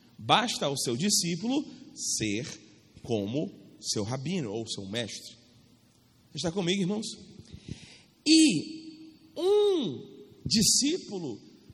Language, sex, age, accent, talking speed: Portuguese, male, 40-59, Brazilian, 90 wpm